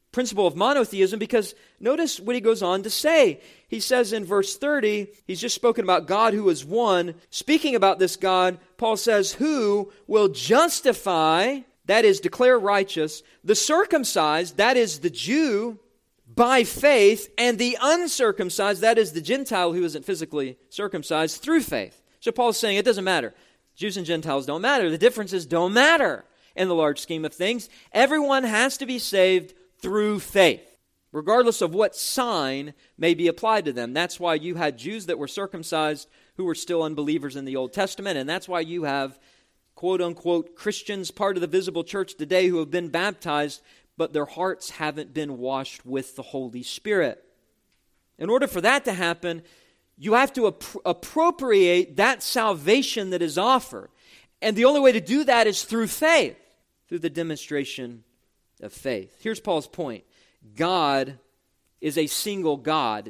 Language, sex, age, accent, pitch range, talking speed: English, male, 40-59, American, 160-230 Hz, 170 wpm